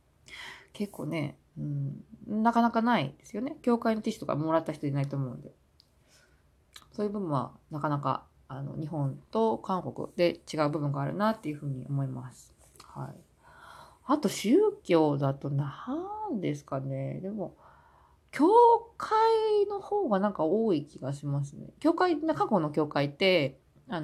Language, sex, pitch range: Japanese, female, 140-230 Hz